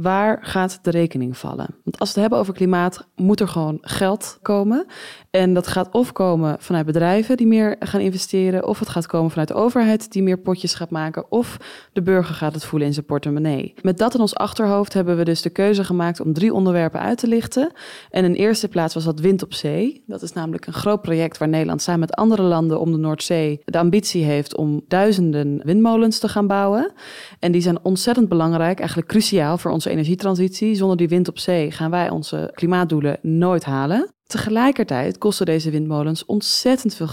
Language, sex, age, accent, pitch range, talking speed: Dutch, female, 20-39, Dutch, 160-205 Hz, 205 wpm